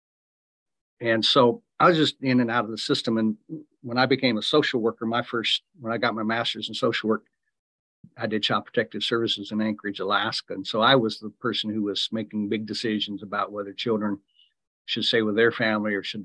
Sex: male